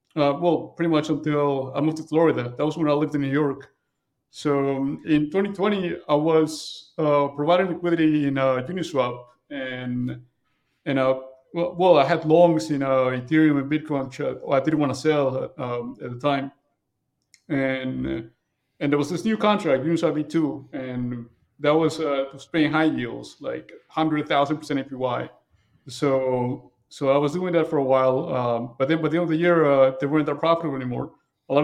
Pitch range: 135-160 Hz